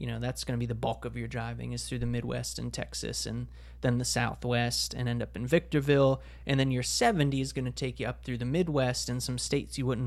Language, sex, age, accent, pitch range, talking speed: English, male, 30-49, American, 115-135 Hz, 260 wpm